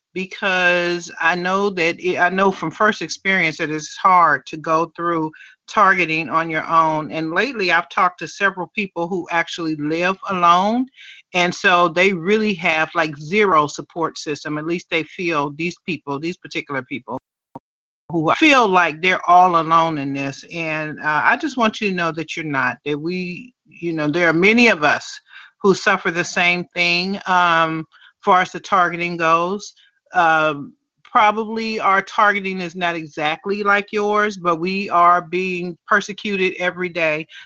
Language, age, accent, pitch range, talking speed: English, 40-59, American, 160-195 Hz, 165 wpm